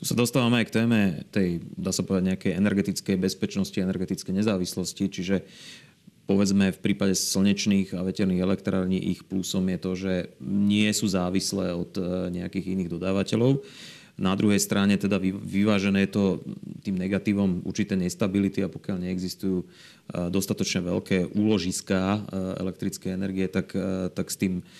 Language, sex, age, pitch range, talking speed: Slovak, male, 30-49, 95-105 Hz, 135 wpm